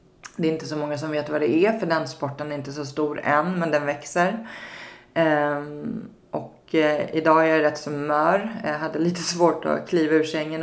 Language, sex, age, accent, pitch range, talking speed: Swedish, female, 20-39, native, 150-175 Hz, 215 wpm